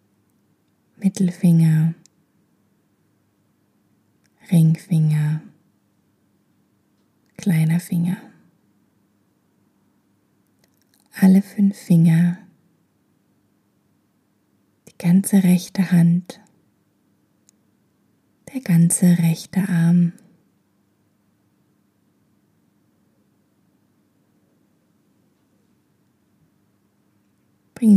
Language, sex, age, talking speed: German, female, 20-39, 35 wpm